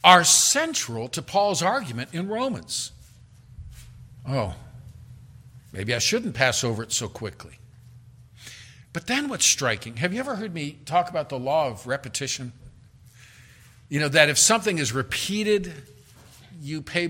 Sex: male